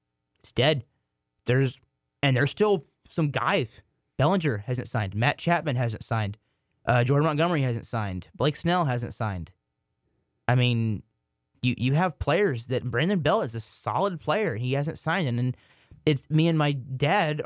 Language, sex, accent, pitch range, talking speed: English, male, American, 120-150 Hz, 160 wpm